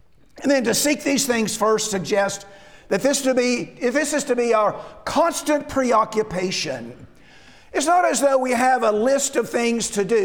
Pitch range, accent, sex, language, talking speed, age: 215-280 Hz, American, male, English, 185 wpm, 50-69